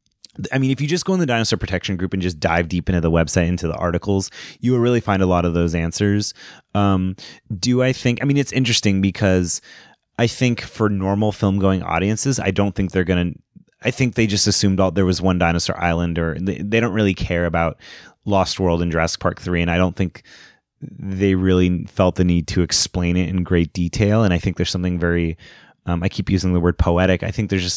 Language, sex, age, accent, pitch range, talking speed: English, male, 30-49, American, 90-115 Hz, 230 wpm